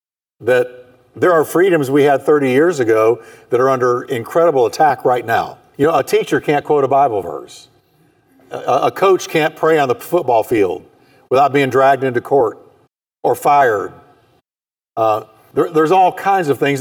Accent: American